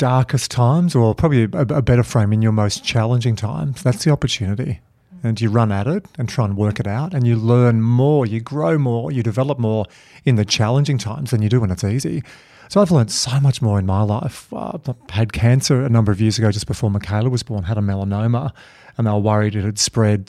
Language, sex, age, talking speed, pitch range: English, male, 40-59, 230 wpm, 110-140 Hz